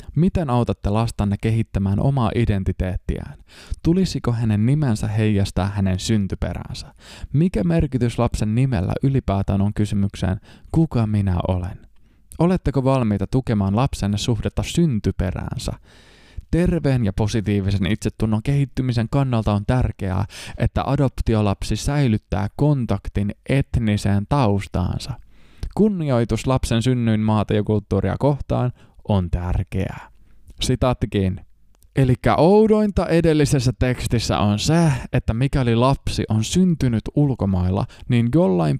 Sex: male